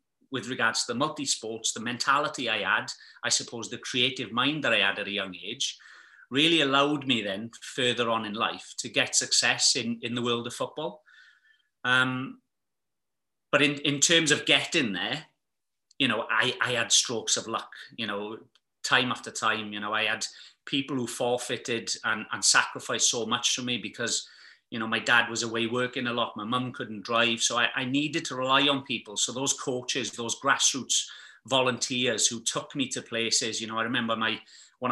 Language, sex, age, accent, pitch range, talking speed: English, male, 30-49, British, 115-130 Hz, 190 wpm